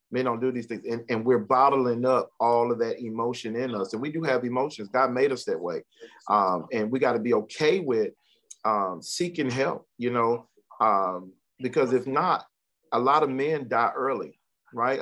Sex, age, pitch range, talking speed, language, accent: male, 40-59, 115-135 Hz, 200 wpm, English, American